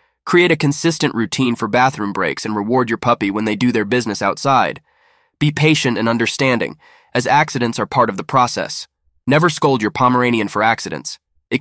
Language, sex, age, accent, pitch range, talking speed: English, male, 20-39, American, 100-140 Hz, 180 wpm